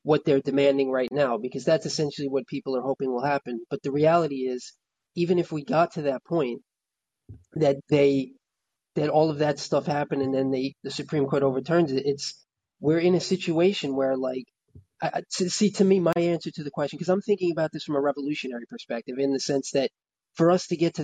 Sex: male